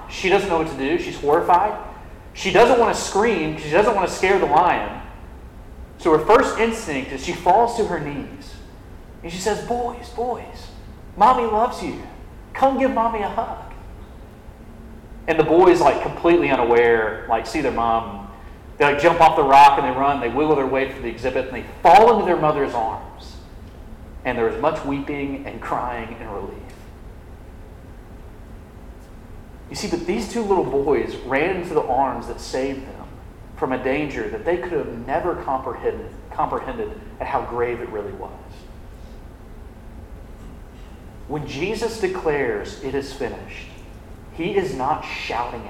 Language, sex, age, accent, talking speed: English, male, 40-59, American, 165 wpm